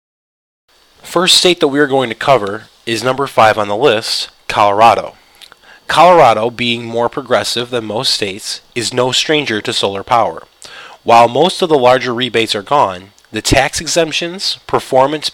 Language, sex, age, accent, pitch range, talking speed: English, male, 20-39, American, 110-145 Hz, 160 wpm